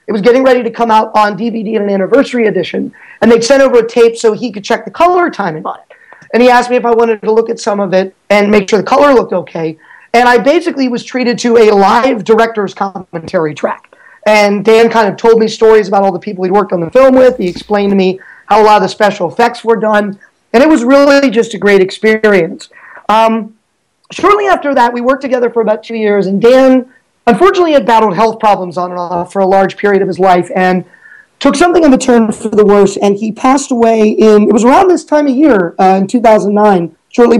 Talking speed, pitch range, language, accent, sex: 240 wpm, 195-245 Hz, English, American, male